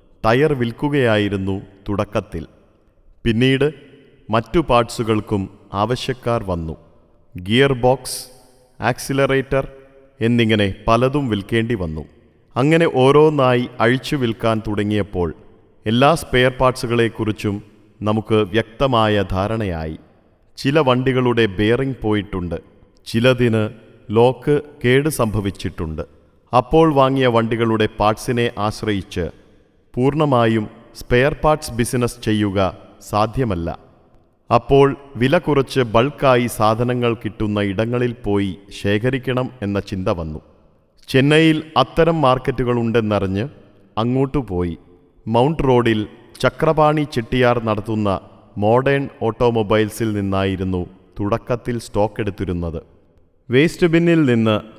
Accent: native